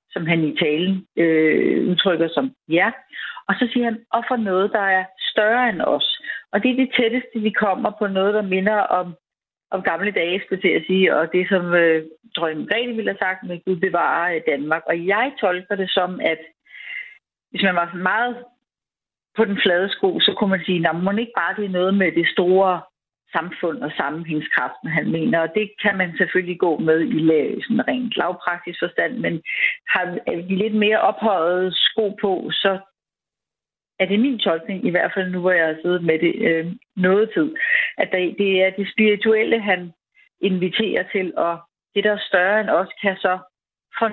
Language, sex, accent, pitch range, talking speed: Danish, female, native, 175-220 Hz, 190 wpm